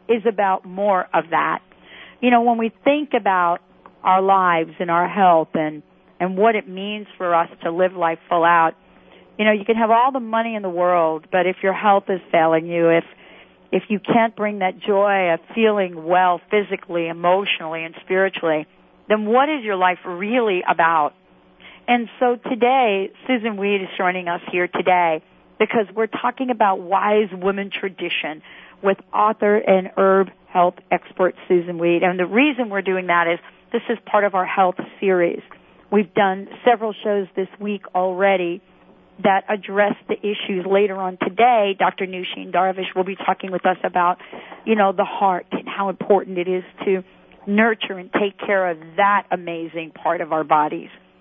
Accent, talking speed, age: American, 175 wpm, 50-69